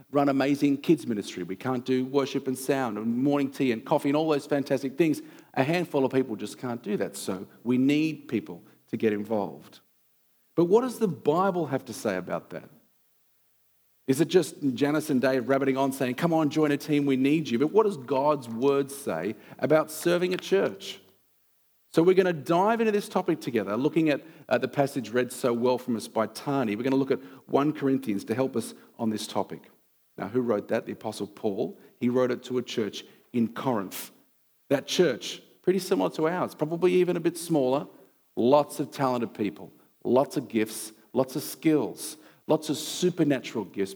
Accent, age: Australian, 40-59